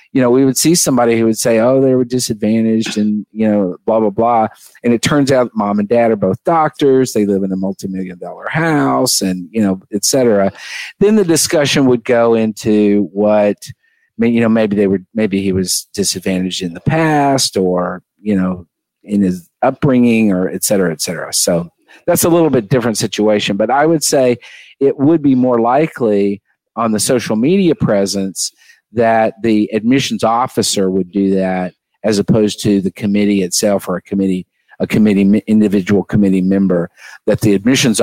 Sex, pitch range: male, 95-125 Hz